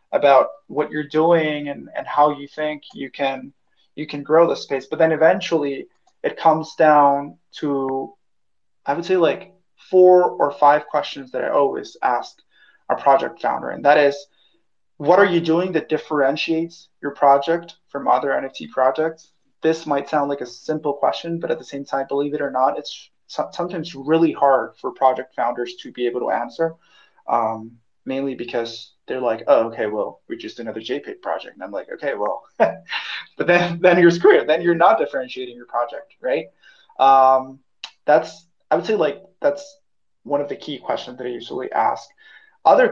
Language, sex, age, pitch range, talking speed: English, male, 20-39, 135-165 Hz, 180 wpm